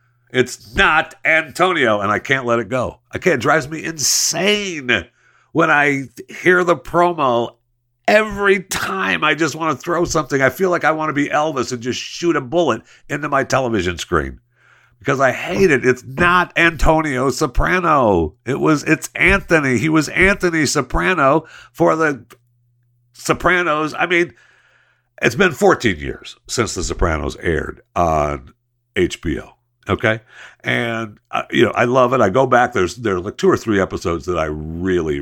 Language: English